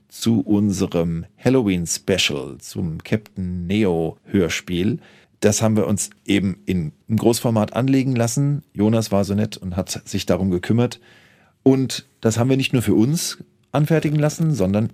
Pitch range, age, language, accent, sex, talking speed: 95-125 Hz, 40-59, German, German, male, 145 wpm